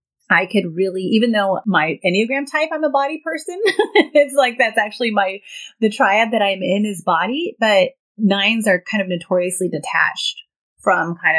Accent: American